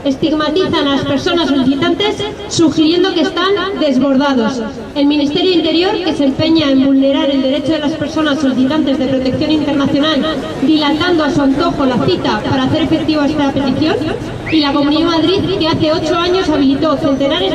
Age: 20-39